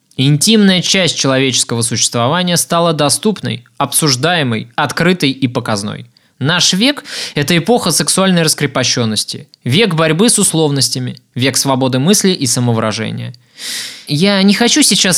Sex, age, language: male, 20-39, Russian